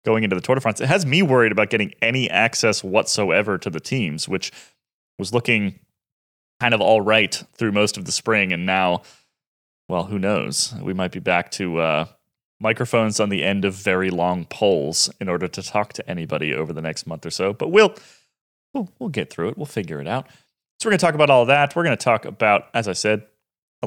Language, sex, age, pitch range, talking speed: English, male, 30-49, 95-140 Hz, 225 wpm